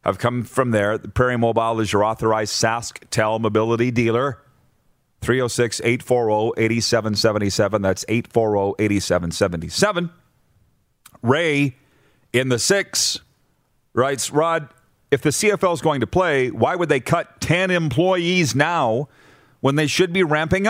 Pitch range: 115-160 Hz